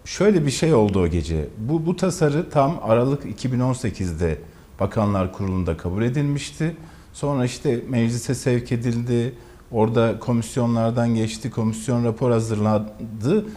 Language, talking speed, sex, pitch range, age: Turkish, 120 wpm, male, 105-140 Hz, 50-69